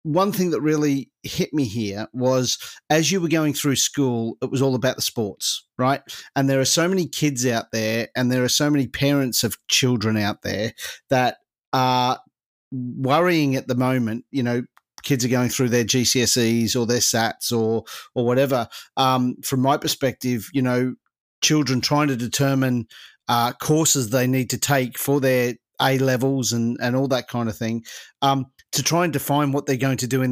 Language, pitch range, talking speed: English, 120-140 Hz, 190 wpm